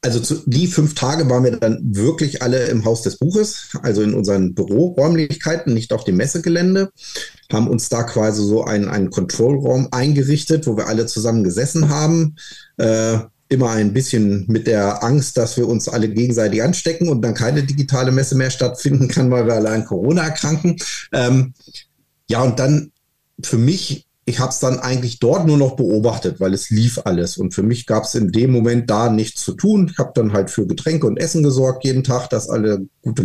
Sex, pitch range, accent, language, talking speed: male, 105-140 Hz, German, German, 195 wpm